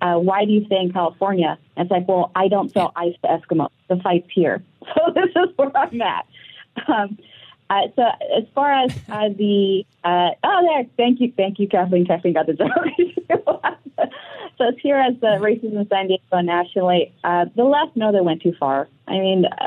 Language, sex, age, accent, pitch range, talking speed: English, female, 30-49, American, 175-225 Hz, 200 wpm